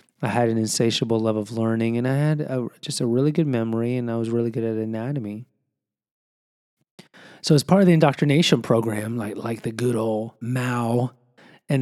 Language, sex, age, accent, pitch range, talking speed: English, male, 30-49, American, 115-135 Hz, 190 wpm